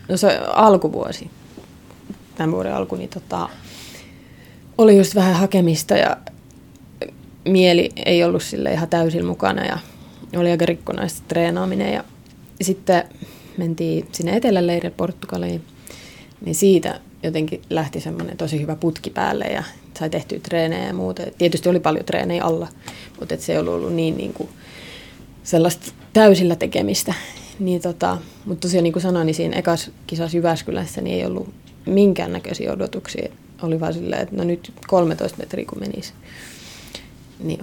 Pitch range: 155-180 Hz